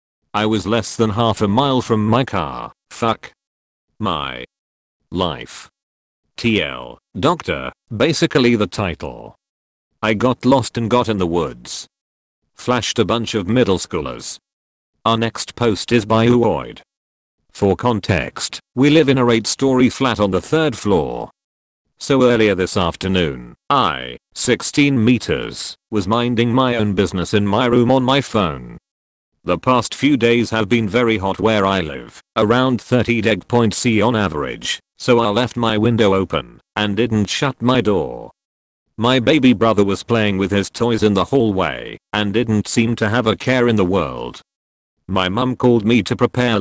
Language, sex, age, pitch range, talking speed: English, male, 40-59, 100-125 Hz, 160 wpm